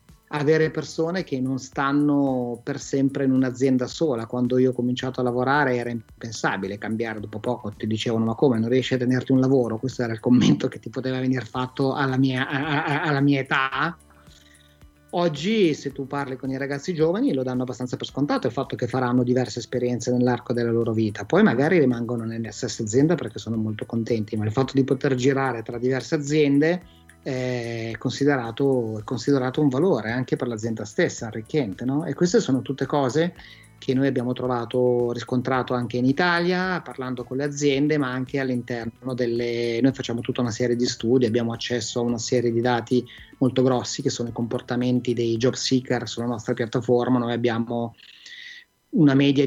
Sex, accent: male, native